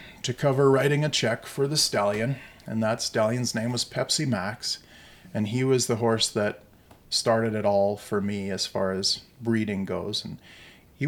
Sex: male